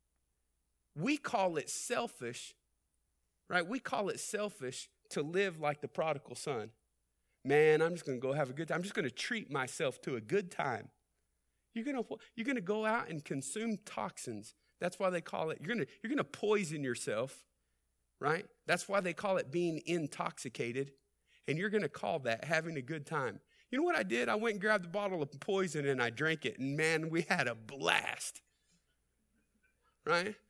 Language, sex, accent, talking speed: English, male, American, 200 wpm